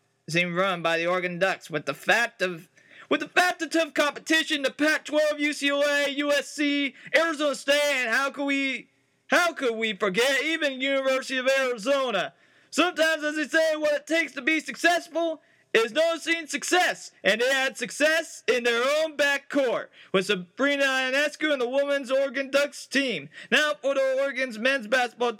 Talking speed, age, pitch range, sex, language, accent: 170 wpm, 30-49, 205-280 Hz, male, English, American